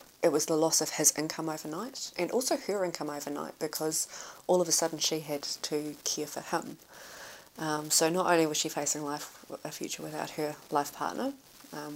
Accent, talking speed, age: Australian, 195 wpm, 30-49